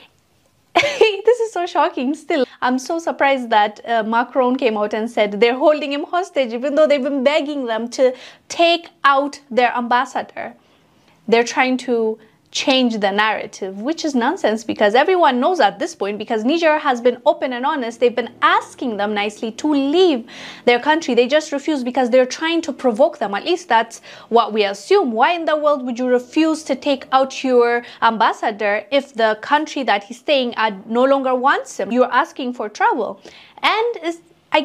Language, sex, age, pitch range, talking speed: English, female, 20-39, 225-295 Hz, 185 wpm